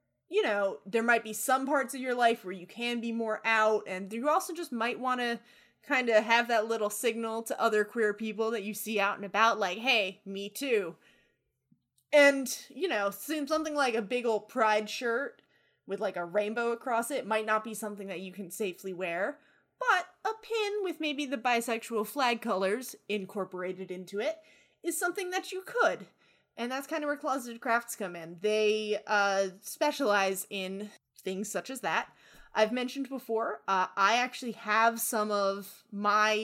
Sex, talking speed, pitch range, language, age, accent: female, 185 wpm, 200-265 Hz, English, 20-39, American